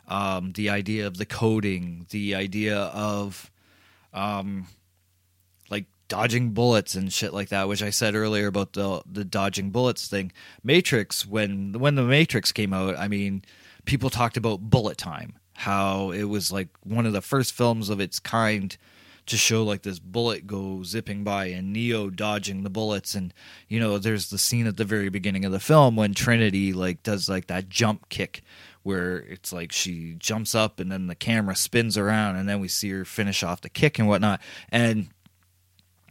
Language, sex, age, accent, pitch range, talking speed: English, male, 30-49, American, 95-115 Hz, 185 wpm